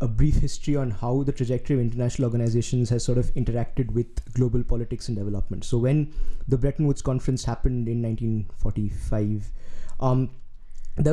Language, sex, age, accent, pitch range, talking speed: English, male, 20-39, Indian, 115-145 Hz, 160 wpm